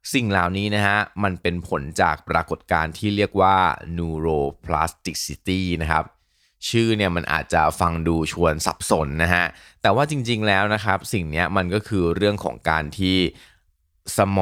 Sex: male